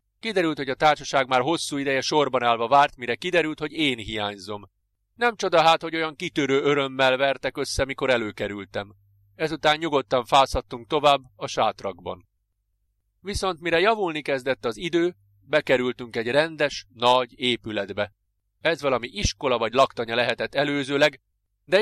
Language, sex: Hungarian, male